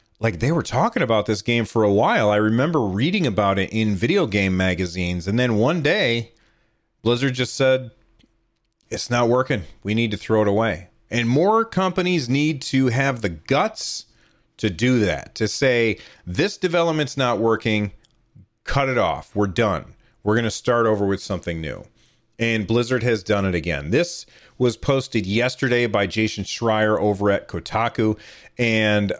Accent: American